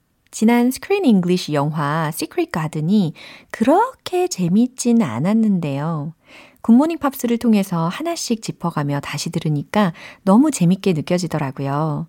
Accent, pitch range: native, 160-225 Hz